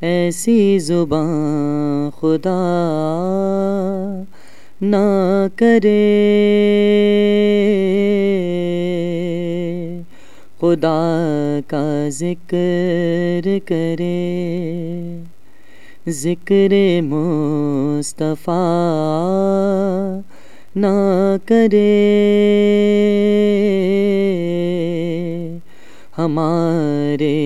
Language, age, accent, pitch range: English, 30-49, Indian, 170-205 Hz